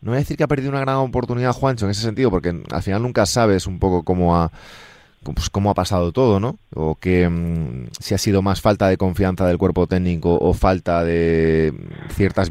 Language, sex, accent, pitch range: Spanish, male, Spanish, 85-115 Hz